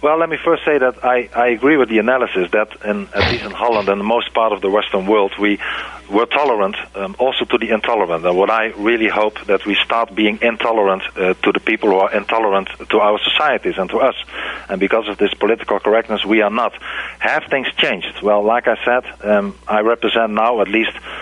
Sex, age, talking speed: male, 40-59, 225 wpm